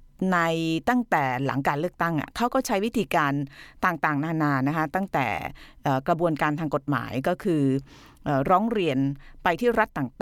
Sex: female